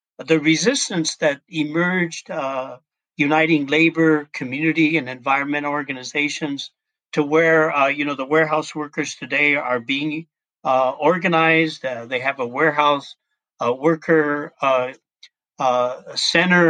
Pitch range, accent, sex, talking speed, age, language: 135-165 Hz, American, male, 120 wpm, 50-69, English